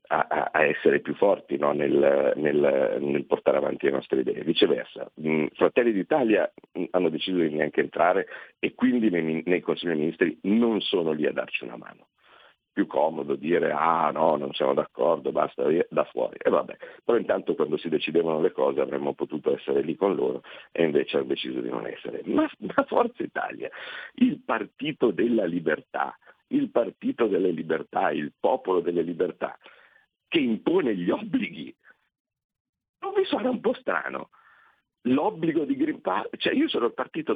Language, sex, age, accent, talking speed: Italian, male, 50-69, native, 165 wpm